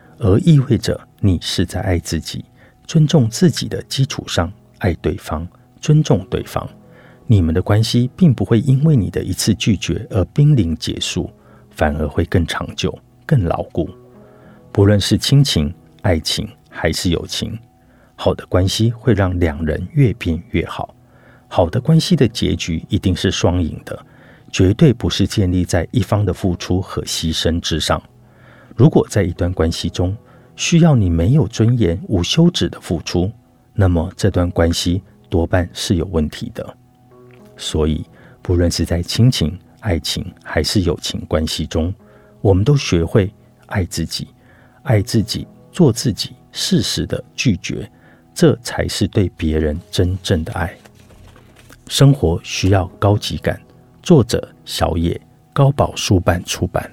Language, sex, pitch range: Chinese, male, 85-120 Hz